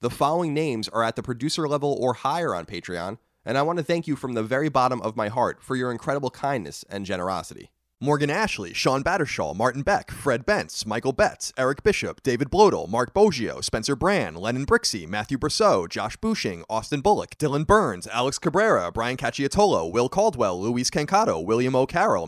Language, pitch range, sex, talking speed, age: English, 125-195 Hz, male, 185 wpm, 30-49